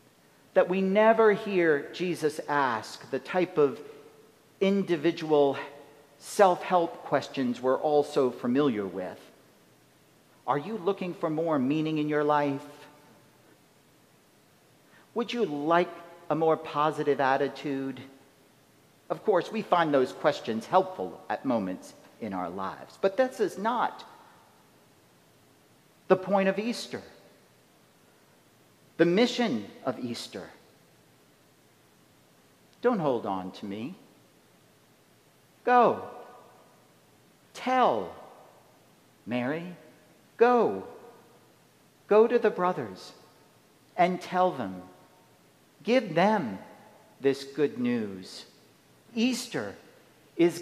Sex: male